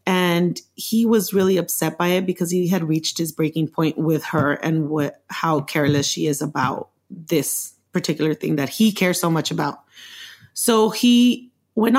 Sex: female